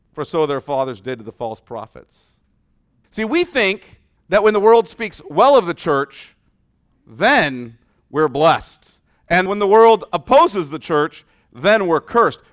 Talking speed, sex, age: 165 wpm, male, 40-59